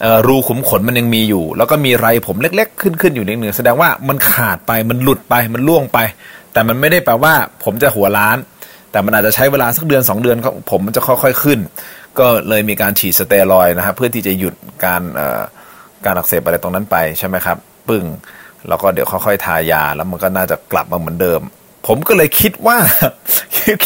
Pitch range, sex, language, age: 105-140 Hz, male, Thai, 30-49